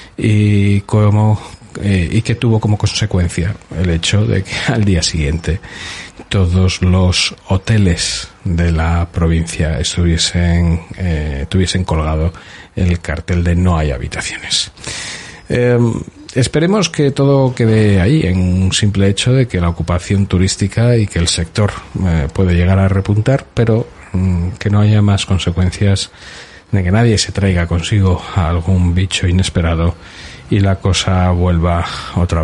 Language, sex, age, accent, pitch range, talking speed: Spanish, male, 40-59, Spanish, 85-105 Hz, 140 wpm